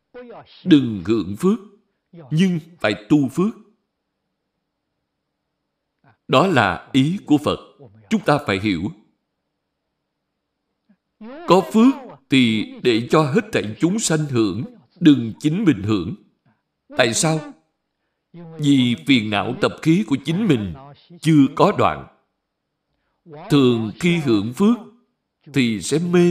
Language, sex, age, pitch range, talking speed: Vietnamese, male, 60-79, 125-180 Hz, 115 wpm